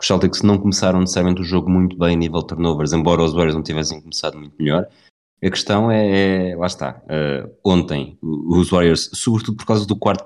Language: Portuguese